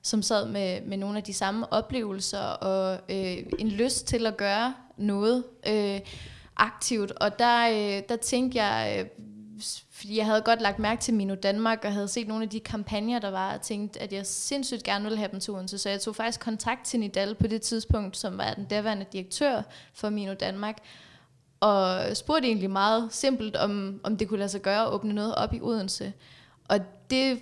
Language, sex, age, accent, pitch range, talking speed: Danish, female, 20-39, native, 200-230 Hz, 205 wpm